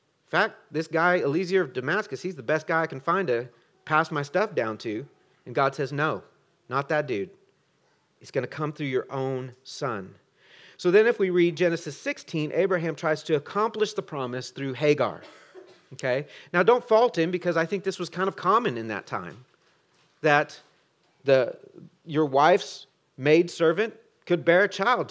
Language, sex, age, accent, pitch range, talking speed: English, male, 40-59, American, 155-225 Hz, 180 wpm